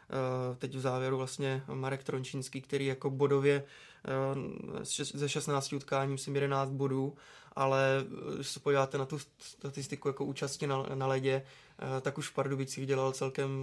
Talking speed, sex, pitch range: 145 wpm, male, 130-140 Hz